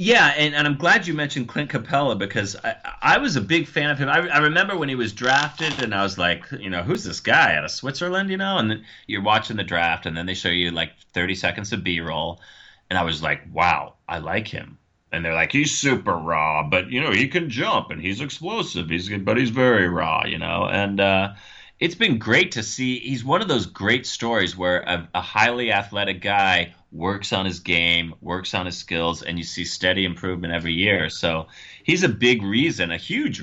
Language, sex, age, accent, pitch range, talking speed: English, male, 30-49, American, 85-110 Hz, 225 wpm